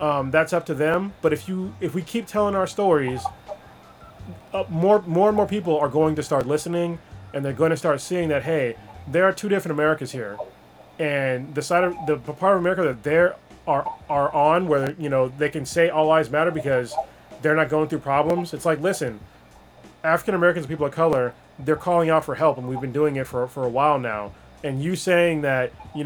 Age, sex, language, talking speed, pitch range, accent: 30-49, male, English, 220 wpm, 140-175 Hz, American